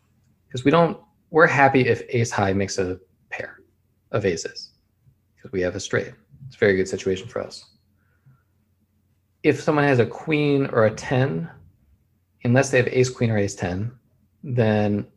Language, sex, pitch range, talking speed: English, male, 100-125 Hz, 165 wpm